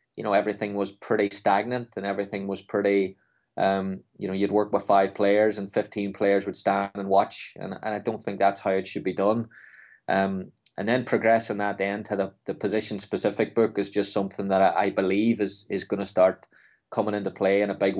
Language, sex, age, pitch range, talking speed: English, male, 20-39, 100-110 Hz, 220 wpm